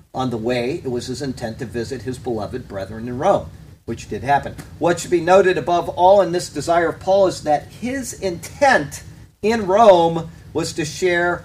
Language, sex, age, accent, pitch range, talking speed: English, male, 50-69, American, 115-150 Hz, 195 wpm